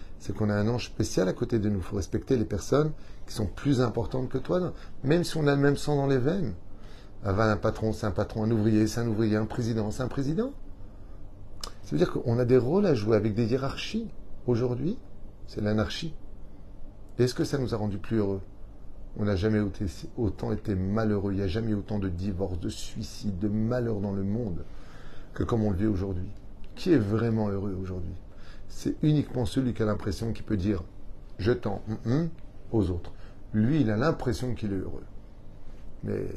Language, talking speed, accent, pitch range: French, 205 wpm, French, 100-120 Hz